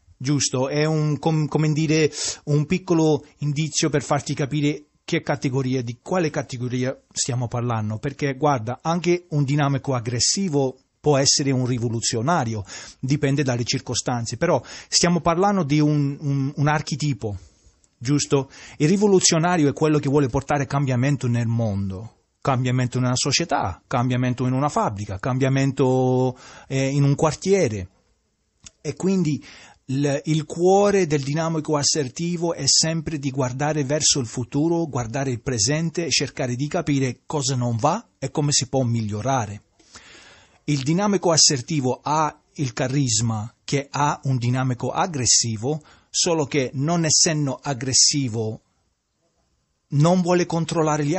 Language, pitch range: English, 125-155 Hz